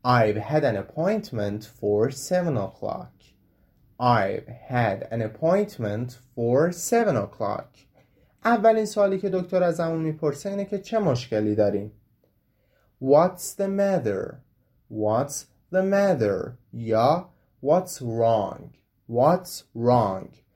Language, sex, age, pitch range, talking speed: Persian, male, 30-49, 110-185 Hz, 105 wpm